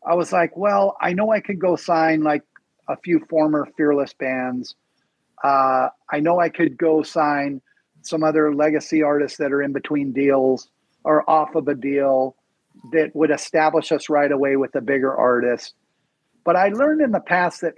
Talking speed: 180 wpm